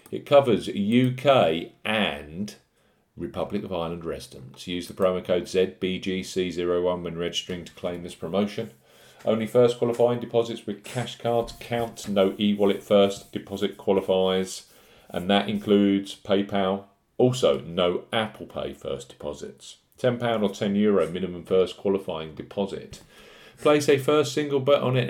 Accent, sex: British, male